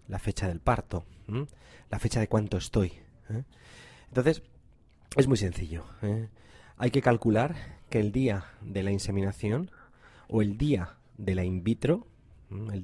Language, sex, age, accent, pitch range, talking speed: Spanish, male, 30-49, Spanish, 100-125 Hz, 140 wpm